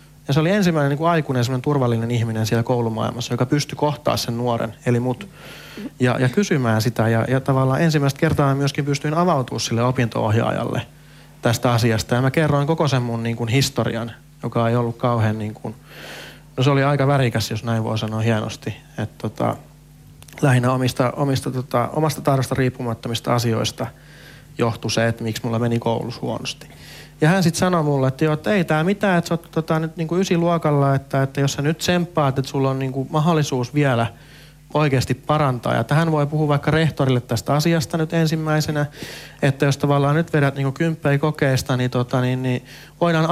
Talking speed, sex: 180 wpm, male